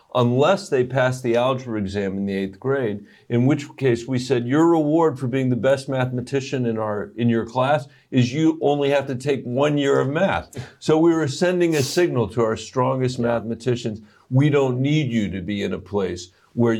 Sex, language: male, English